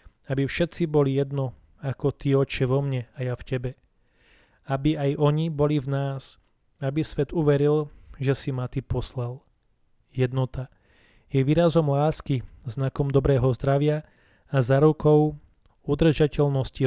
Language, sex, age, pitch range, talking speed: Slovak, male, 30-49, 130-150 Hz, 130 wpm